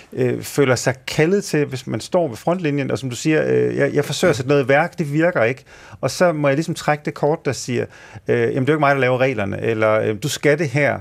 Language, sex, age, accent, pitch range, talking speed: Danish, male, 40-59, native, 115-150 Hz, 280 wpm